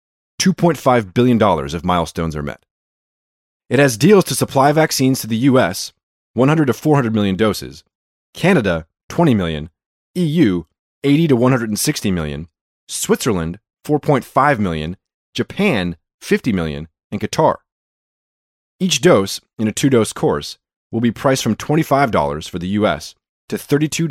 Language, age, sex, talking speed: English, 30-49, male, 125 wpm